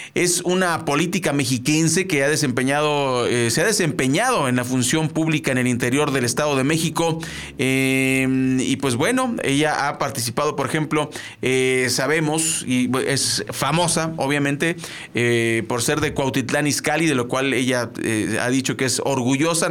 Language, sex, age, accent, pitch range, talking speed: Spanish, male, 40-59, Mexican, 130-160 Hz, 160 wpm